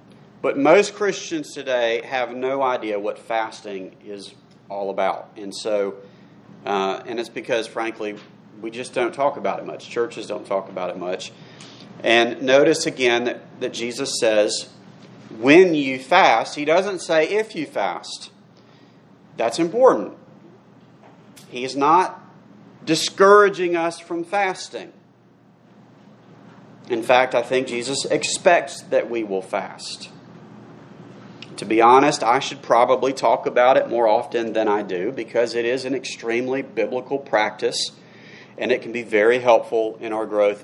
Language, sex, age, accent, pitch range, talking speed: English, male, 40-59, American, 110-155 Hz, 140 wpm